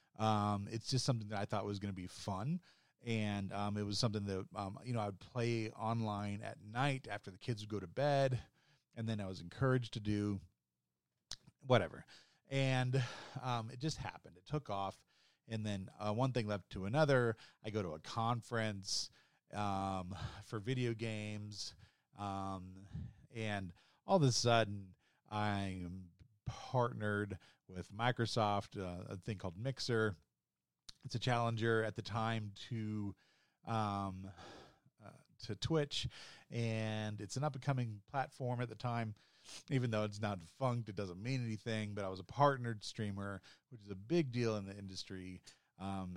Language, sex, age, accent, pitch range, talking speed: English, male, 30-49, American, 100-120 Hz, 160 wpm